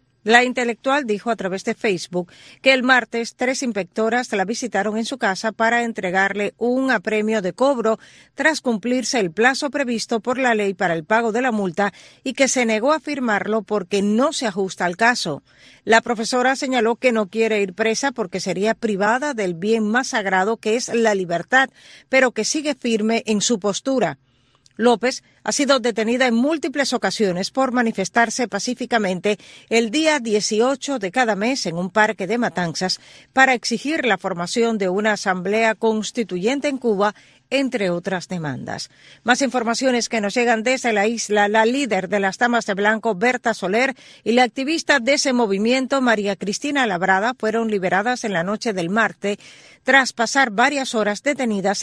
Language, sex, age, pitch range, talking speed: Spanish, female, 40-59, 200-250 Hz, 170 wpm